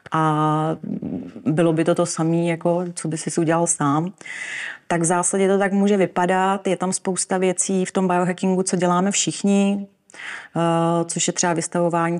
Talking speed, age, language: 165 wpm, 30-49, Czech